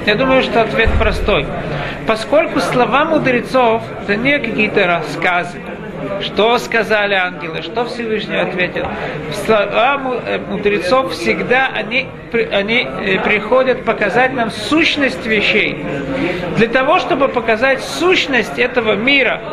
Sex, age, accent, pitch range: male, 50-69, native, 205-260 Hz